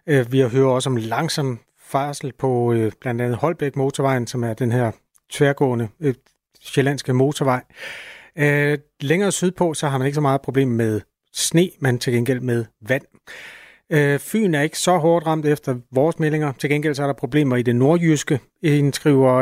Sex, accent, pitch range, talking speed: male, native, 130-155 Hz, 180 wpm